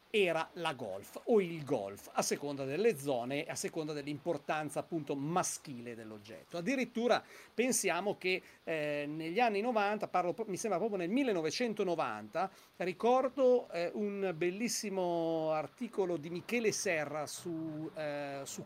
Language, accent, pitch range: Italian, native, 165-215 Hz